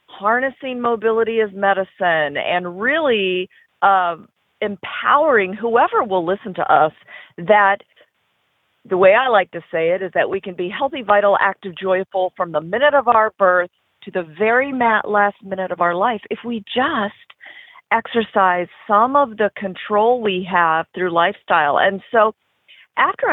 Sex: female